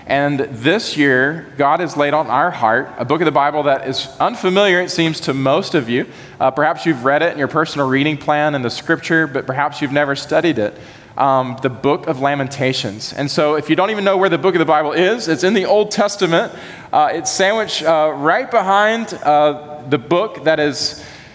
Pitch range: 140-165 Hz